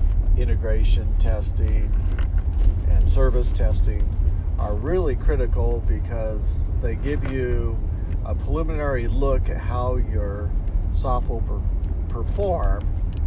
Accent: American